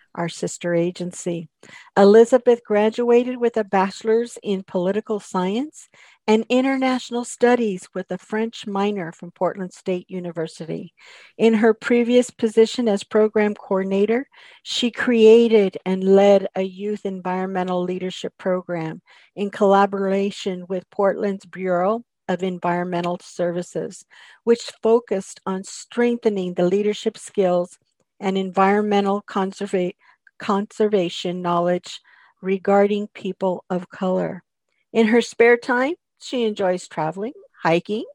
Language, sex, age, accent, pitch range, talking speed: English, female, 50-69, American, 180-220 Hz, 110 wpm